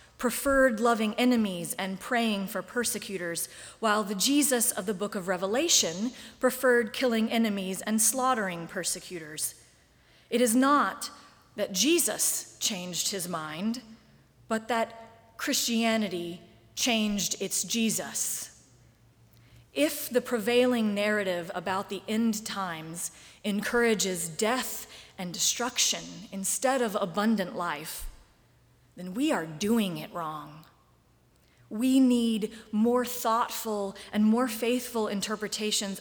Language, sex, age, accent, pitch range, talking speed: English, female, 30-49, American, 190-235 Hz, 110 wpm